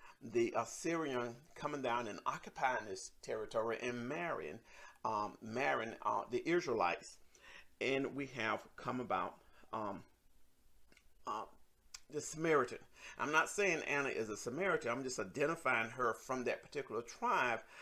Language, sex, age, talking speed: English, male, 50-69, 130 wpm